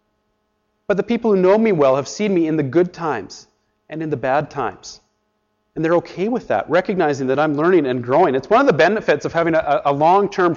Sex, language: male, English